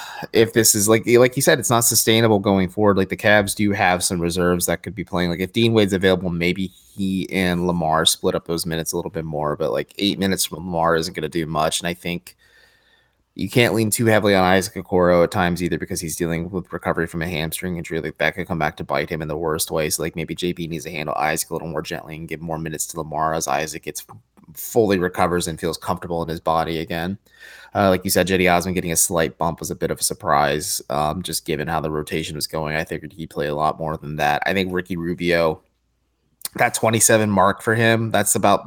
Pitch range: 80-95 Hz